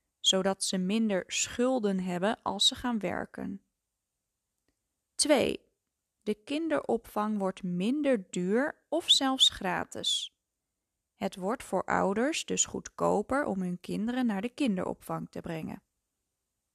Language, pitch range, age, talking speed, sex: Dutch, 185-245 Hz, 20-39, 115 wpm, female